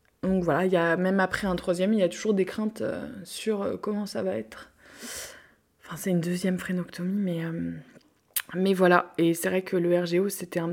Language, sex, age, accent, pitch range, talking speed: French, female, 20-39, French, 180-205 Hz, 215 wpm